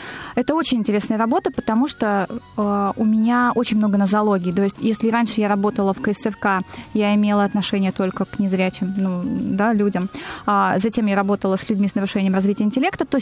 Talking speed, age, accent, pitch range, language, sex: 175 wpm, 20-39, native, 205-250 Hz, Russian, female